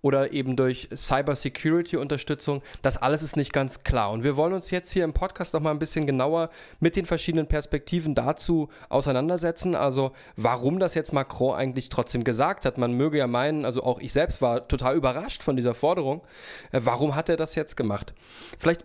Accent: German